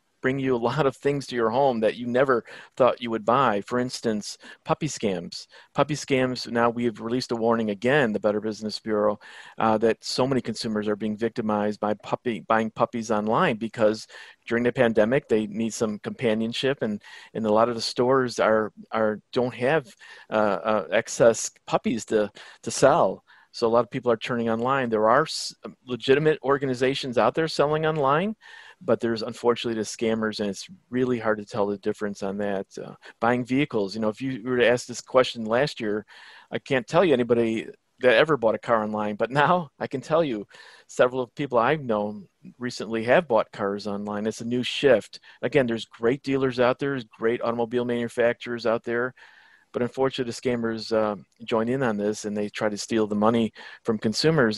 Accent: American